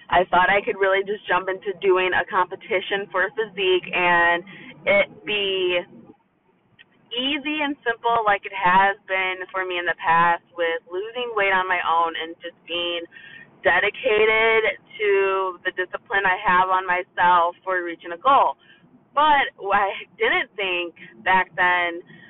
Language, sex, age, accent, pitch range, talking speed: English, female, 20-39, American, 170-195 Hz, 150 wpm